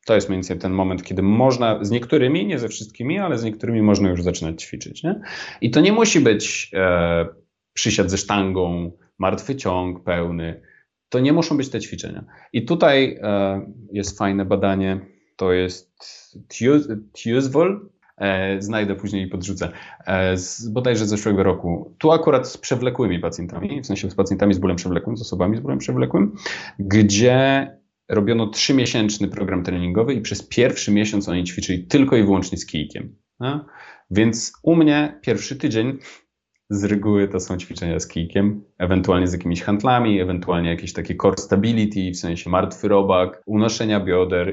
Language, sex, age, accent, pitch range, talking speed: Polish, male, 30-49, native, 95-120 Hz, 165 wpm